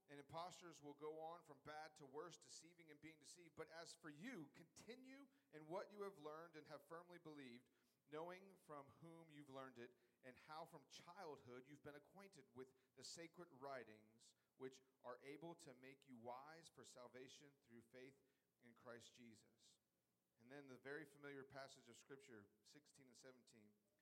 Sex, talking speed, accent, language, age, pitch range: male, 170 wpm, American, English, 40-59, 125-150 Hz